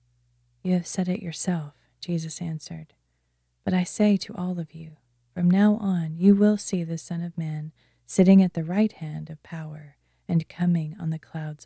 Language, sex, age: English, female, 30-49